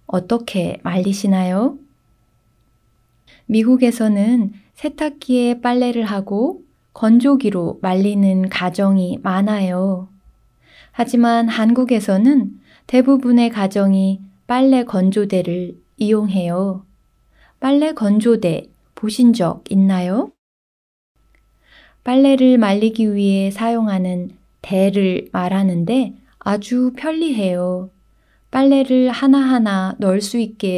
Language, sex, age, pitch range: Korean, female, 20-39, 190-250 Hz